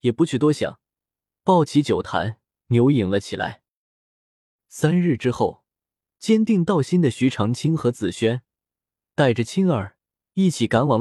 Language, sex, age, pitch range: Chinese, male, 20-39, 110-170 Hz